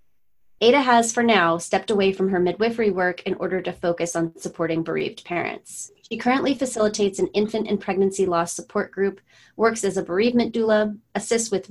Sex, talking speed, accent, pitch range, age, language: female, 180 wpm, American, 180-220 Hz, 30-49, English